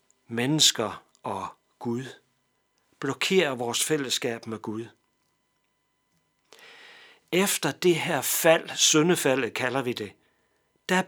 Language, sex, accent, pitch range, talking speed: Danish, male, native, 125-160 Hz, 90 wpm